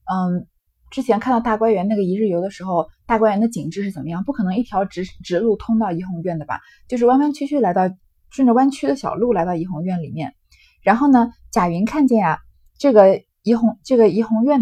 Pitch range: 180-250 Hz